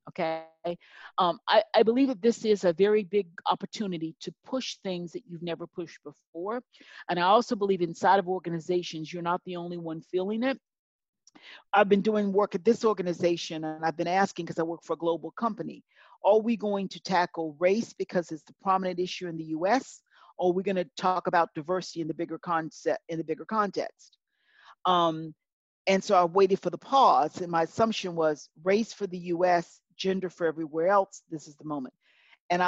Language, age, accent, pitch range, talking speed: English, 40-59, American, 170-215 Hz, 195 wpm